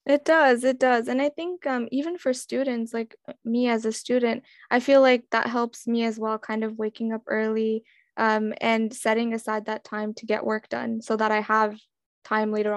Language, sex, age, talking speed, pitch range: English, female, 10-29, 210 wpm, 215-260 Hz